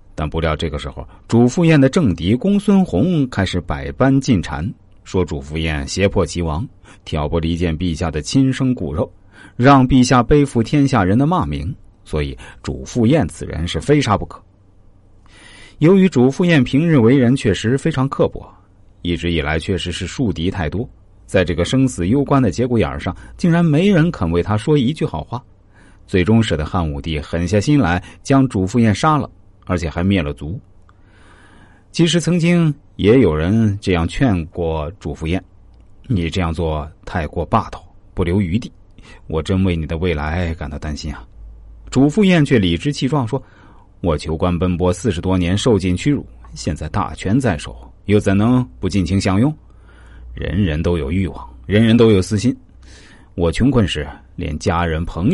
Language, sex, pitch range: Chinese, male, 85-120 Hz